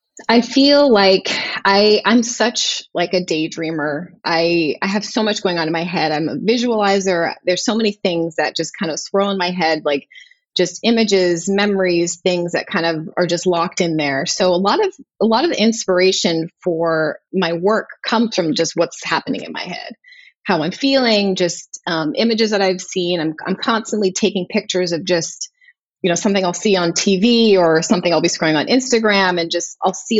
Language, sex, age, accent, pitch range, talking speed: English, female, 20-39, American, 170-220 Hz, 200 wpm